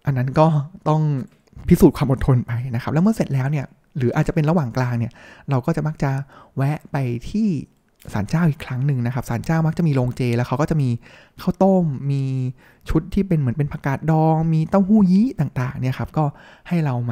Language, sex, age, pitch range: Thai, male, 20-39, 130-175 Hz